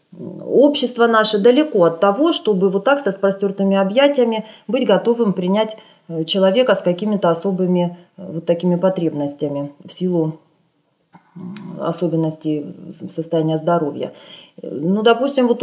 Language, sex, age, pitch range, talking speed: Russian, female, 20-39, 170-240 Hz, 110 wpm